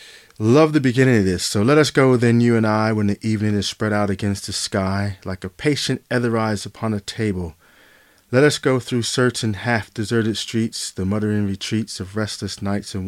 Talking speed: 195 wpm